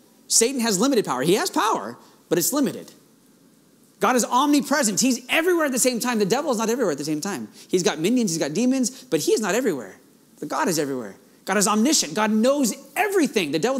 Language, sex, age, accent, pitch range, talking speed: English, male, 30-49, American, 225-290 Hz, 220 wpm